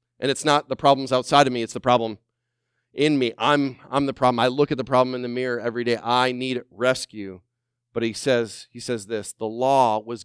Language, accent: English, American